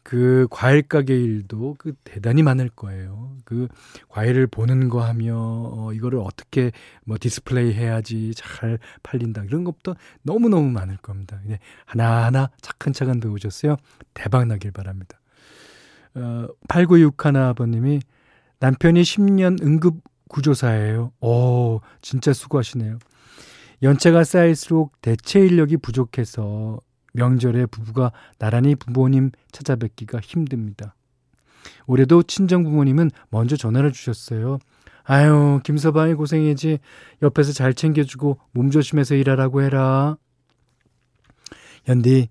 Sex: male